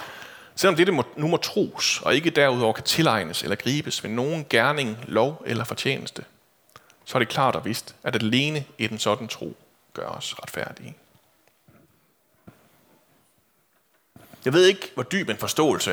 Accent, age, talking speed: native, 30-49, 155 wpm